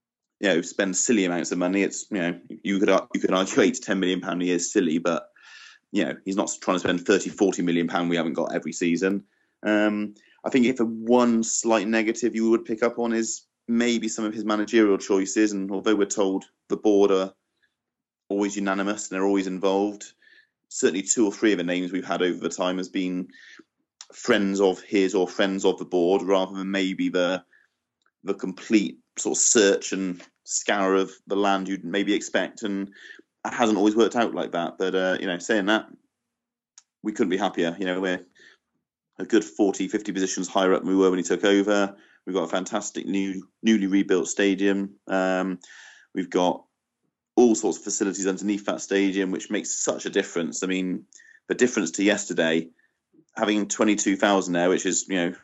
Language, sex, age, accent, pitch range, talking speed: English, male, 30-49, British, 95-105 Hz, 200 wpm